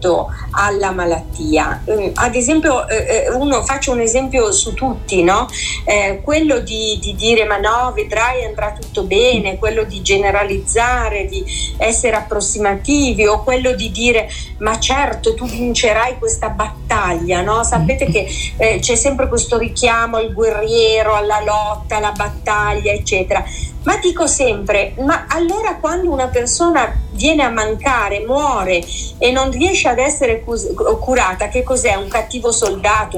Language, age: Italian, 40-59